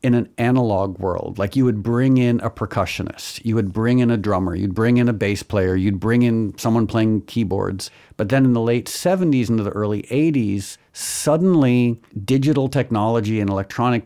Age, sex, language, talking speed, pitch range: 50-69, male, English, 190 wpm, 105-125 Hz